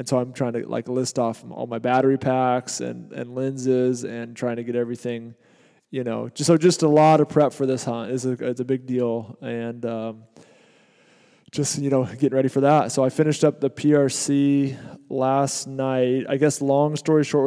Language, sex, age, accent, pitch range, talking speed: English, male, 20-39, American, 120-140 Hz, 205 wpm